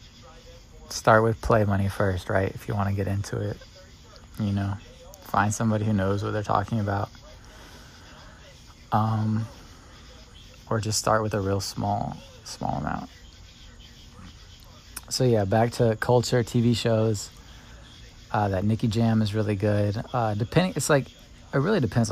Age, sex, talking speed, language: 20-39, male, 145 wpm, English